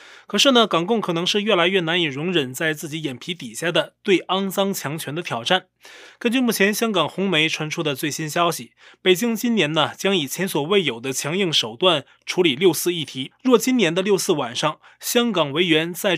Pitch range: 155-210 Hz